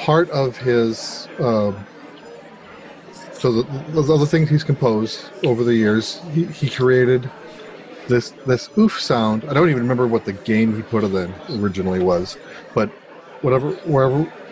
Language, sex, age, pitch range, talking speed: English, male, 40-59, 115-145 Hz, 155 wpm